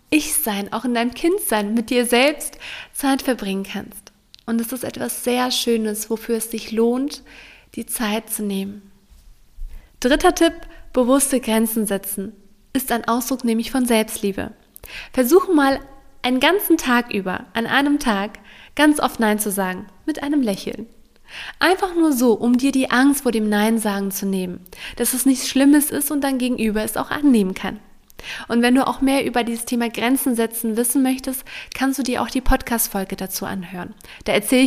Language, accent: German, German